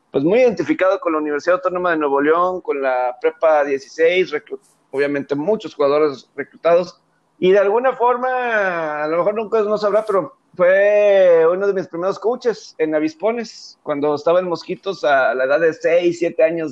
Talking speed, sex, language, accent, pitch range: 180 wpm, male, Spanish, Mexican, 140-185 Hz